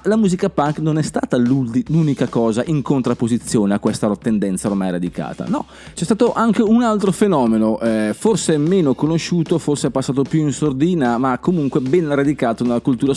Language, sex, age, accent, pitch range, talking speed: Italian, male, 30-49, native, 125-175 Hz, 175 wpm